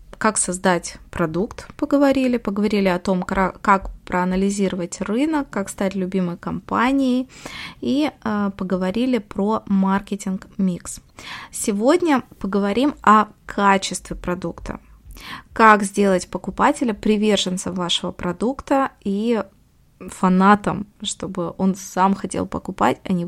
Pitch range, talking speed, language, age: 185-235 Hz, 100 wpm, Russian, 20-39